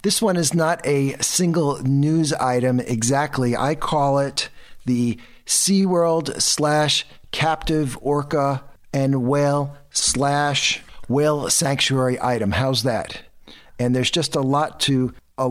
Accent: American